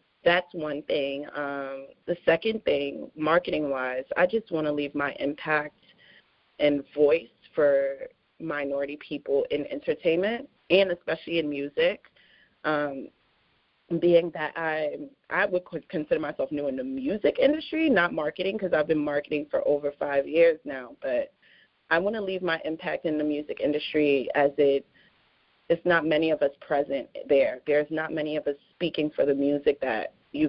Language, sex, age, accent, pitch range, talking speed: English, female, 30-49, American, 140-175 Hz, 155 wpm